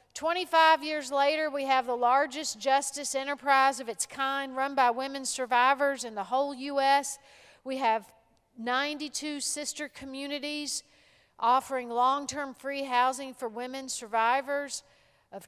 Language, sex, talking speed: English, female, 130 wpm